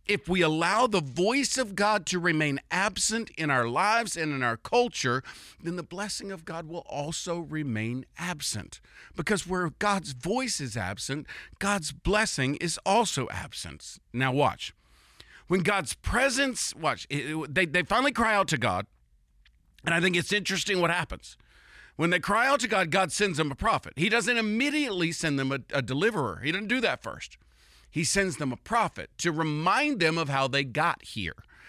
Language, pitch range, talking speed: English, 130-195 Hz, 180 wpm